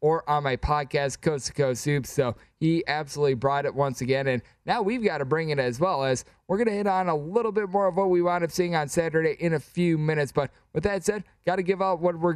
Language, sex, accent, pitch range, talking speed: English, male, American, 150-195 Hz, 265 wpm